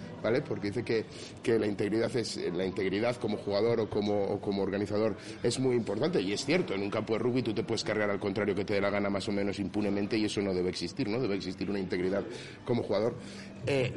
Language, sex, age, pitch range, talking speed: Spanish, male, 30-49, 105-125 Hz, 240 wpm